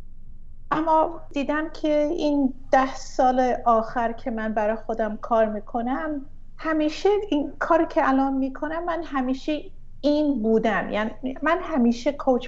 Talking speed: 130 wpm